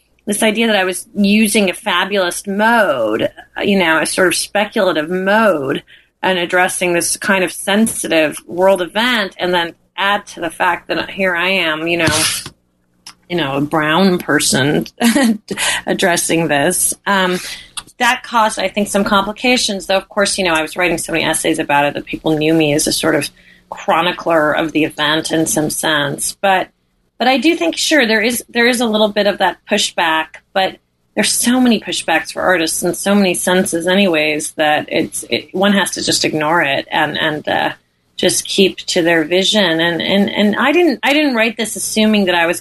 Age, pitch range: 30-49, 165-205 Hz